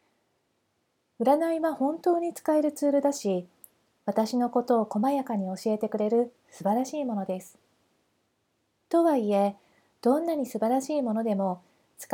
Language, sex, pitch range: Japanese, female, 205-265 Hz